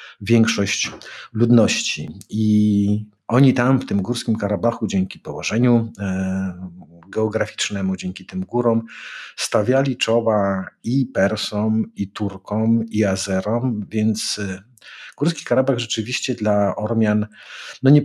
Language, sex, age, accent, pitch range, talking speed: Polish, male, 50-69, native, 100-120 Hz, 100 wpm